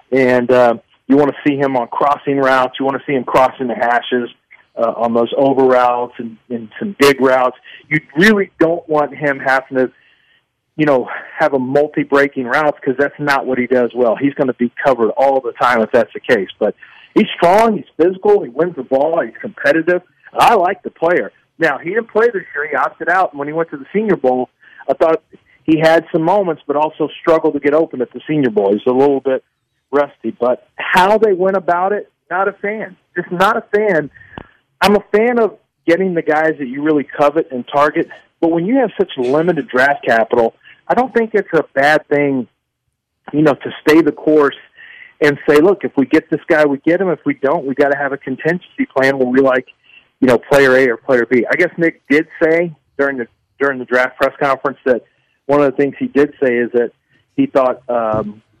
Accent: American